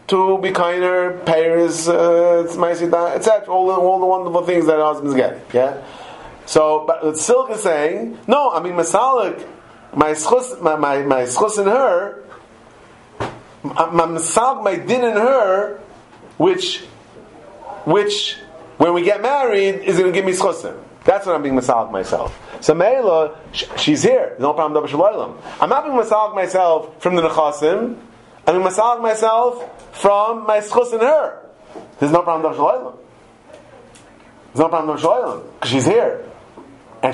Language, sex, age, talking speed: English, male, 30-49, 145 wpm